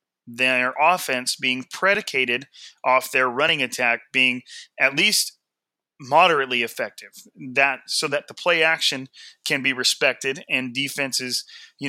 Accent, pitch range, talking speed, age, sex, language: American, 125-140 Hz, 125 wpm, 30-49, male, English